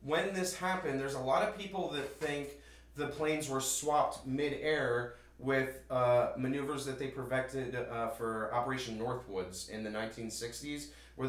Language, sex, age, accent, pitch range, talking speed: English, male, 30-49, American, 115-140 Hz, 155 wpm